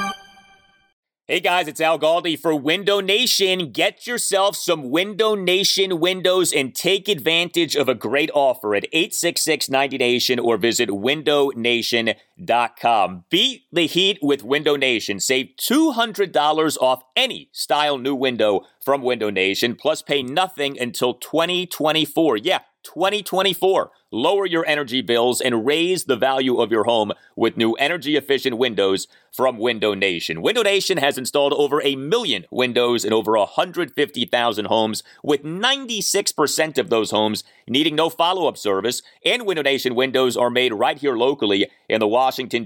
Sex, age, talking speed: male, 30-49, 145 wpm